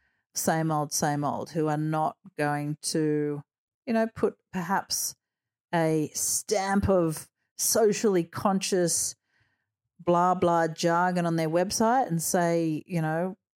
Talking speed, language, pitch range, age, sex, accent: 125 wpm, English, 155-195 Hz, 40-59, female, Australian